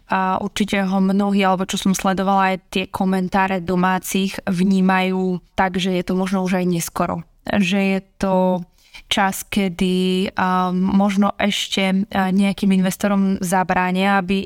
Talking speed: 135 wpm